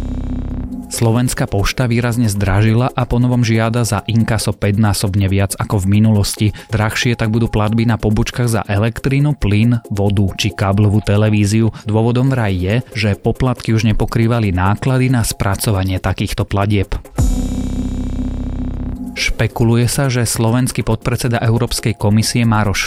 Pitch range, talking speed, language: 100-115 Hz, 130 wpm, Slovak